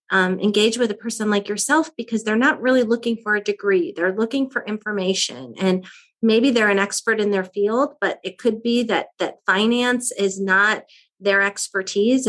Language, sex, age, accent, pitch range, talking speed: English, female, 30-49, American, 185-220 Hz, 185 wpm